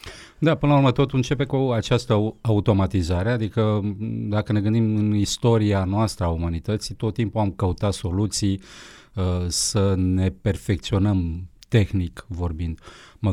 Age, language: 30-49, Romanian